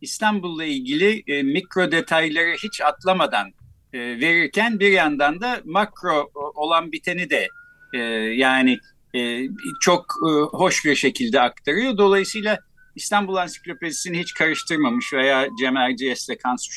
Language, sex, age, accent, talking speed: Turkish, male, 50-69, native, 125 wpm